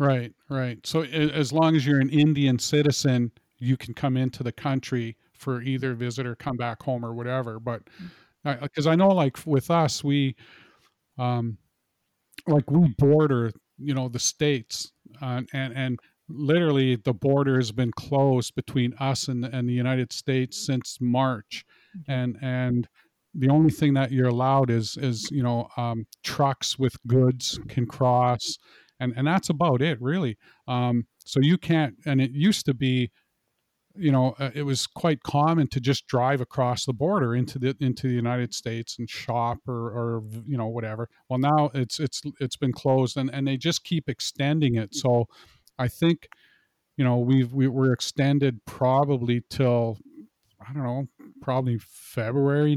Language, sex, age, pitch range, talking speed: English, male, 40-59, 120-140 Hz, 170 wpm